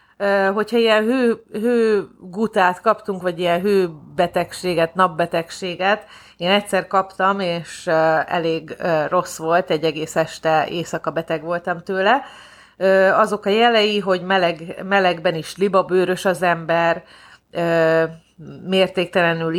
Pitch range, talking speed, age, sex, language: 165-190 Hz, 105 wpm, 30-49, female, Hungarian